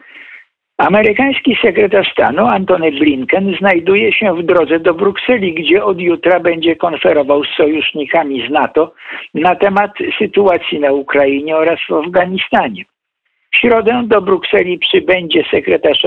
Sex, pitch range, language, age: male, 165-230 Hz, Polish, 60-79